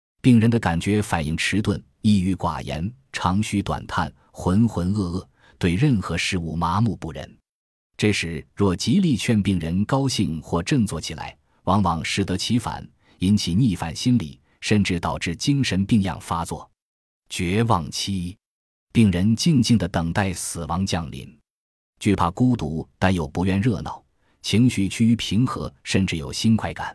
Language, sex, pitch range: Chinese, male, 85-115 Hz